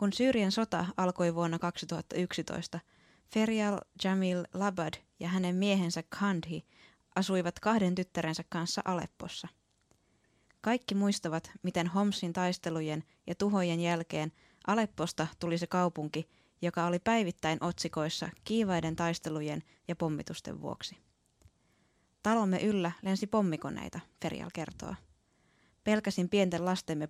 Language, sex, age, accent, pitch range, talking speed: Finnish, female, 20-39, native, 165-200 Hz, 105 wpm